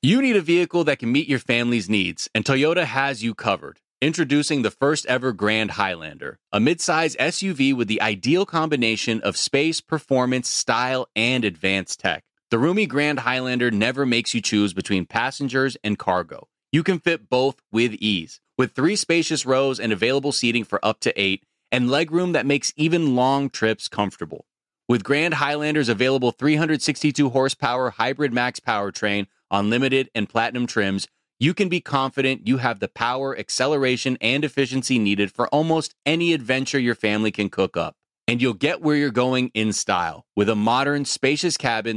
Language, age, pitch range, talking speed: English, 30-49, 115-145 Hz, 165 wpm